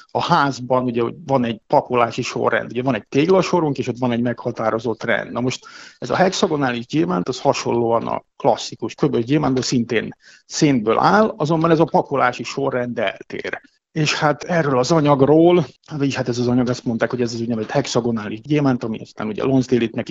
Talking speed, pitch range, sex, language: 180 wpm, 120-145 Hz, male, Hungarian